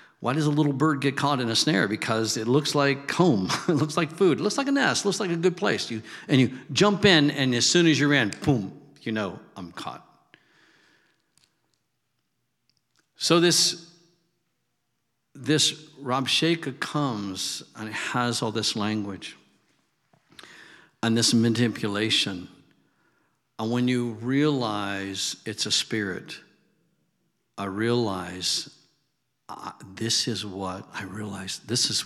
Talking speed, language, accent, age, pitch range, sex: 145 wpm, English, American, 60-79, 110-150 Hz, male